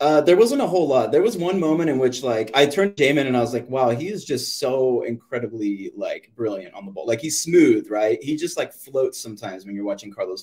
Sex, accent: male, American